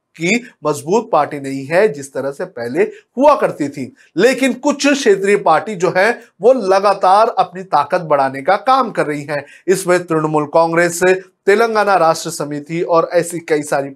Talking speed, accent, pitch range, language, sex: 160 wpm, native, 155-210 Hz, Hindi, male